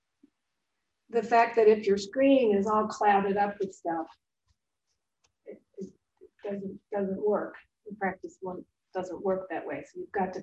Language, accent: English, American